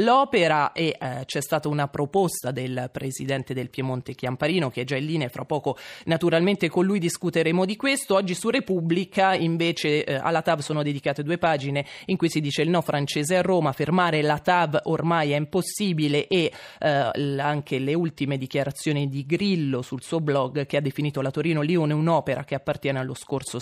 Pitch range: 145-180 Hz